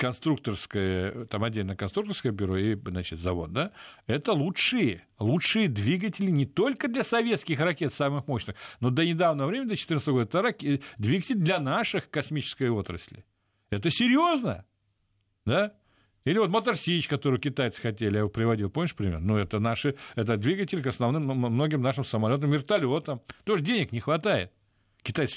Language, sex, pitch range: Russian, male, 105-165 Hz